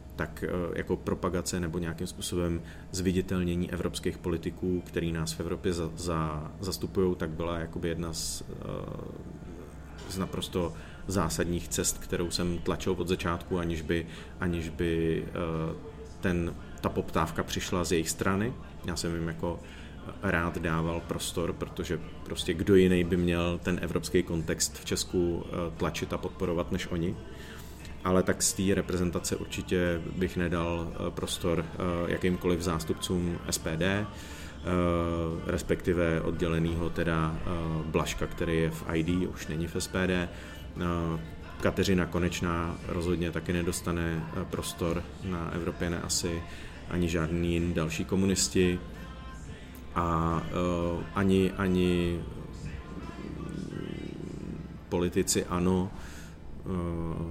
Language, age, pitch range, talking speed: Czech, 30-49, 80-90 Hz, 110 wpm